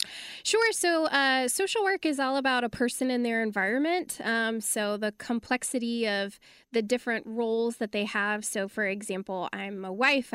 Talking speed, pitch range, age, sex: 175 wpm, 205-255 Hz, 10-29, female